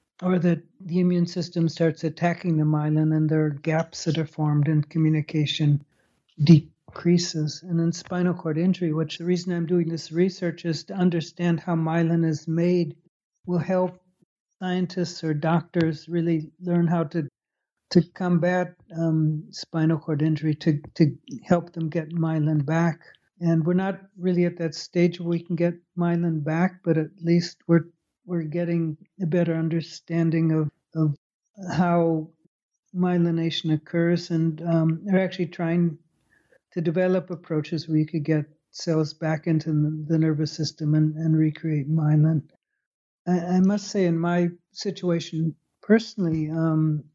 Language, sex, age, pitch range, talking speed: English, male, 60-79, 160-175 Hz, 150 wpm